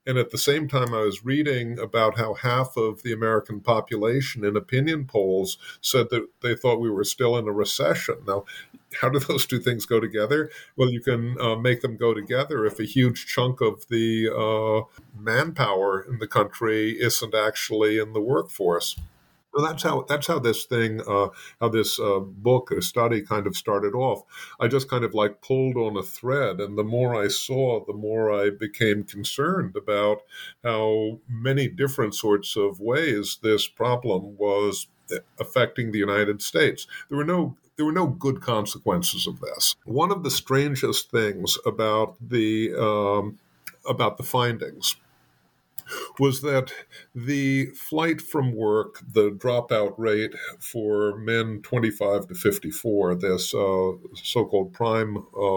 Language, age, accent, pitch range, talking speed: English, 50-69, American, 105-130 Hz, 165 wpm